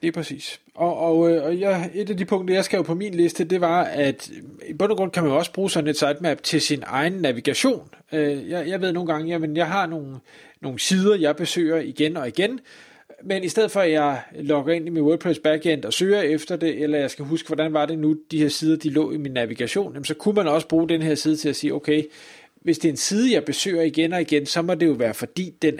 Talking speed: 265 wpm